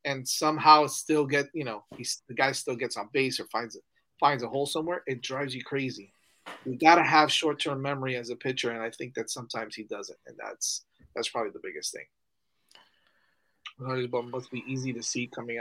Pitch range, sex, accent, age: 130-170 Hz, male, American, 30-49